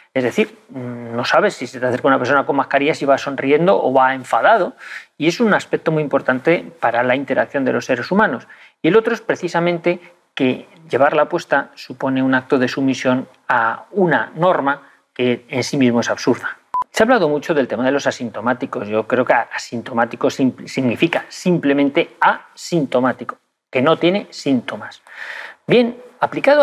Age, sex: 40-59, male